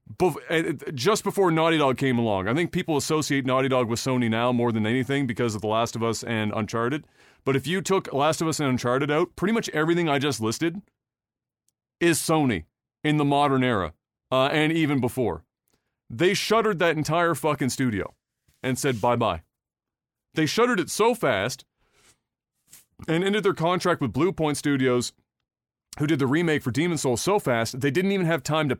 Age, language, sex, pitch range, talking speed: 30-49, English, male, 125-160 Hz, 190 wpm